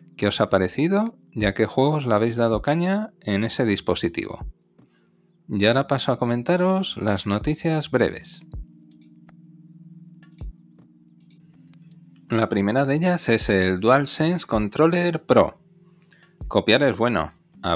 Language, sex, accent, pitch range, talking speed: Spanish, male, Spanish, 100-160 Hz, 120 wpm